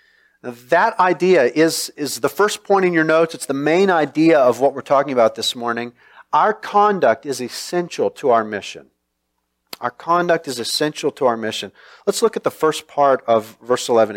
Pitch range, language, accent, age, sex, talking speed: 140-210 Hz, English, American, 40-59, male, 185 wpm